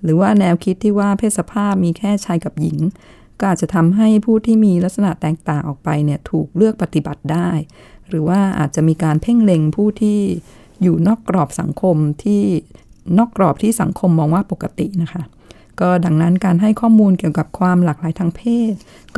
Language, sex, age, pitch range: Thai, female, 20-39, 155-195 Hz